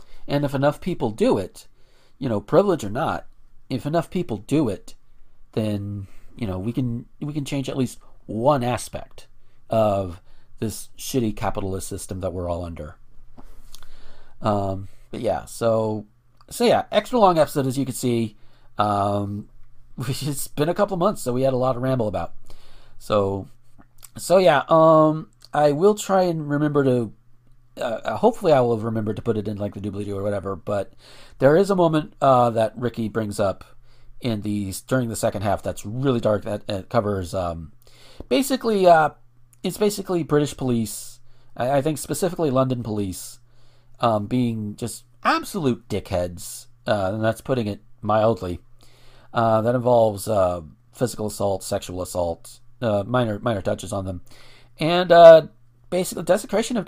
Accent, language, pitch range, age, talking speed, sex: American, English, 105-135 Hz, 40-59, 165 wpm, male